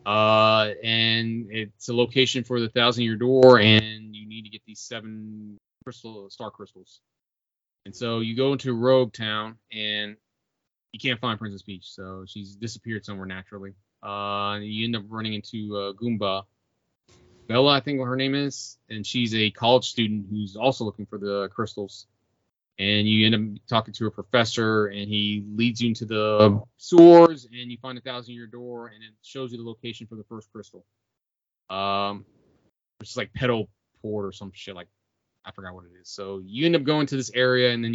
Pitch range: 105-120 Hz